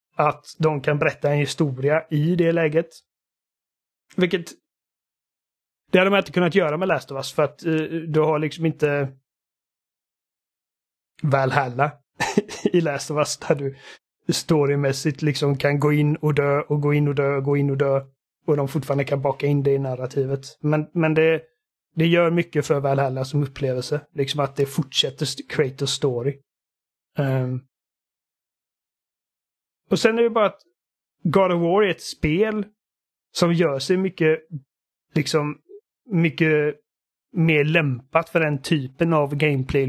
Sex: male